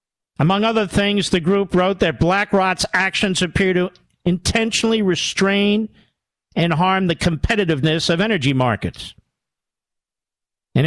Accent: American